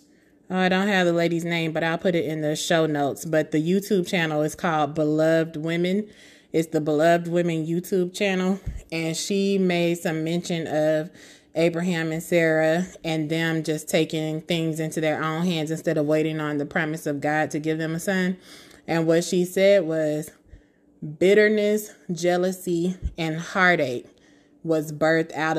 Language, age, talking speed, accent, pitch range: English, 20-39, 165 wpm, American, 155-175 Hz